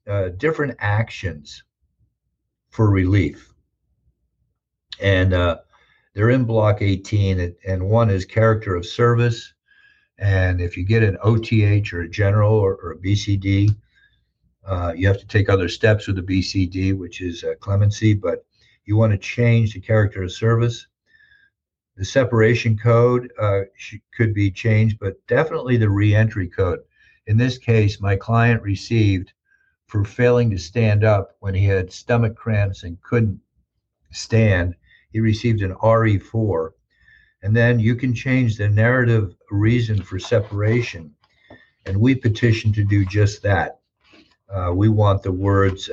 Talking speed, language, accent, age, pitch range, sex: 145 wpm, English, American, 50-69, 95-115 Hz, male